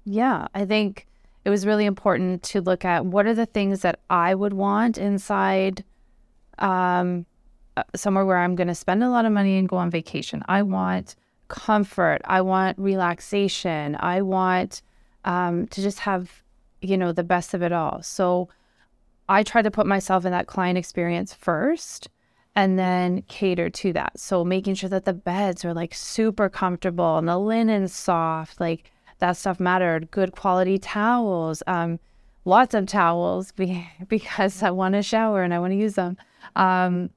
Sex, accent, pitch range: female, American, 175-205 Hz